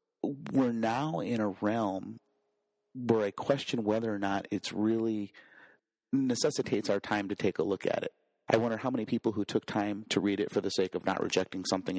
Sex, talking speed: male, 200 wpm